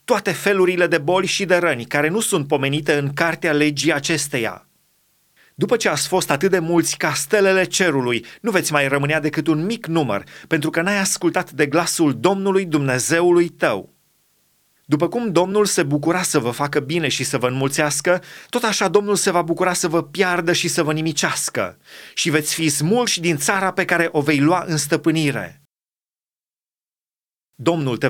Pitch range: 145-175 Hz